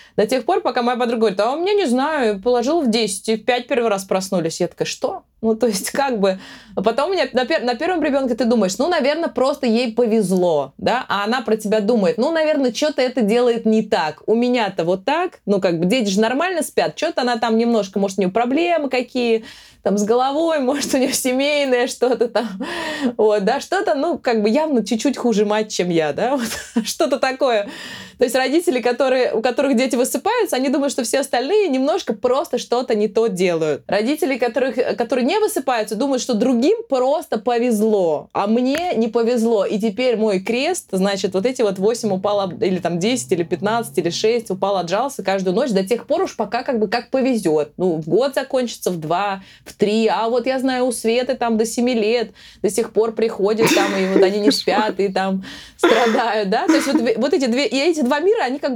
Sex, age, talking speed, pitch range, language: female, 20-39, 210 wpm, 210-265 Hz, Russian